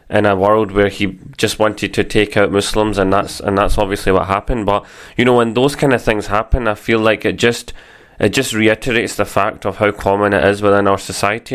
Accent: British